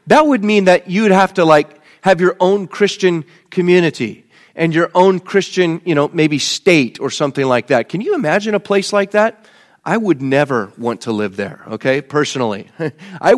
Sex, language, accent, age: male, English, American, 30-49